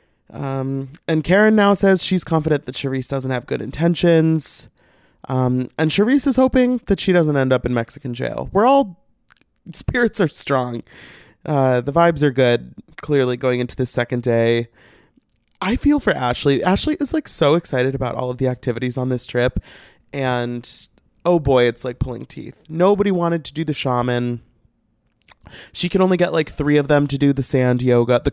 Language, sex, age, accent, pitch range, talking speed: English, male, 20-39, American, 125-185 Hz, 180 wpm